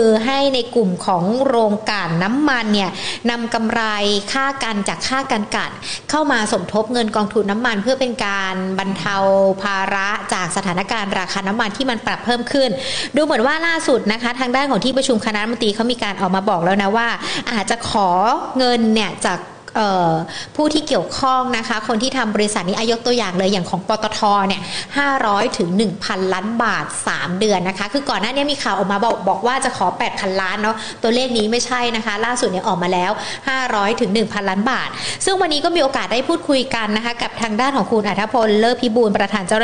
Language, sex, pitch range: Thai, female, 200-255 Hz